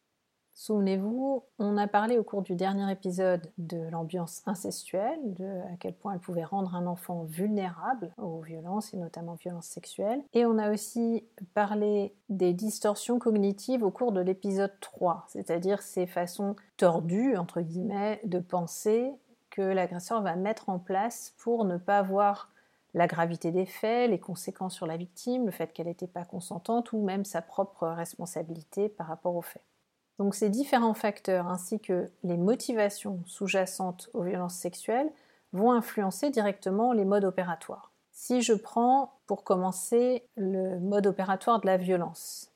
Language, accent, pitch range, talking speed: French, French, 180-220 Hz, 155 wpm